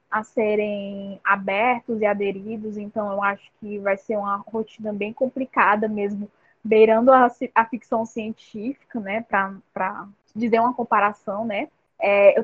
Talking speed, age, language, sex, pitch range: 135 wpm, 10-29, Portuguese, female, 215-255 Hz